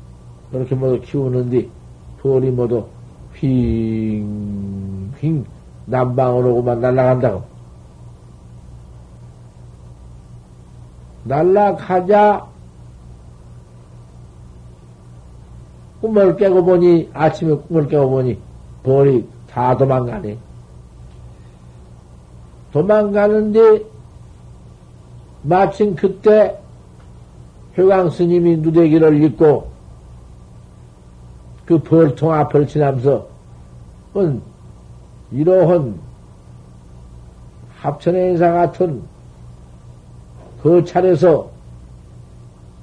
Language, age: Korean, 60-79